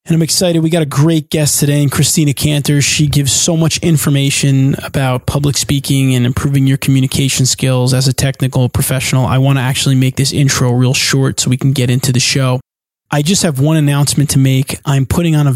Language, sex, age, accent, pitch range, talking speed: English, male, 20-39, American, 135-155 Hz, 215 wpm